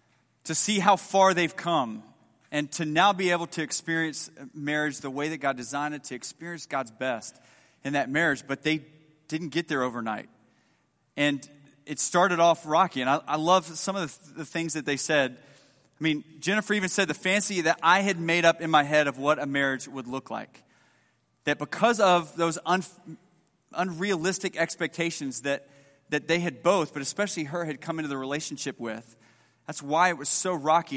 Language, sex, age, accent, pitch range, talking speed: English, male, 30-49, American, 145-180 Hz, 190 wpm